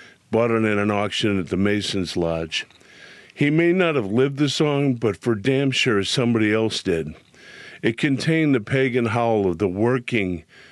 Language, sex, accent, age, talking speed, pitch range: English, male, American, 50-69, 175 wpm, 100-130 Hz